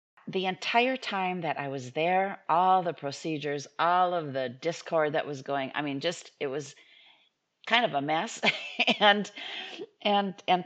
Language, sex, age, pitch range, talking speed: English, female, 40-59, 145-205 Hz, 165 wpm